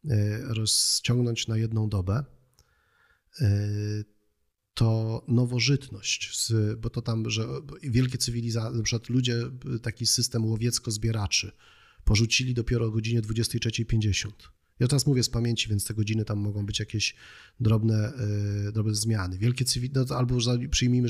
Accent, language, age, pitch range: native, Polish, 30-49, 110-125 Hz